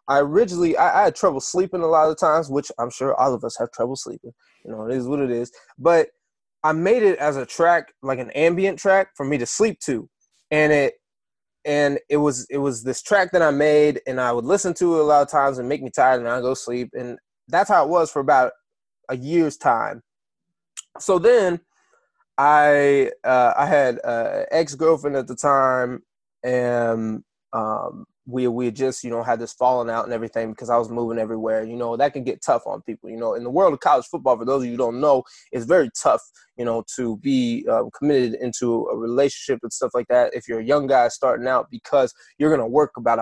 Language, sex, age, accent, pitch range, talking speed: English, male, 20-39, American, 120-155 Hz, 225 wpm